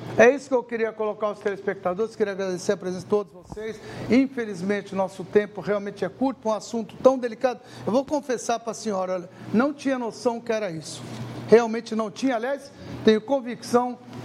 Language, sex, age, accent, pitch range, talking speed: Portuguese, male, 60-79, Brazilian, 200-250 Hz, 190 wpm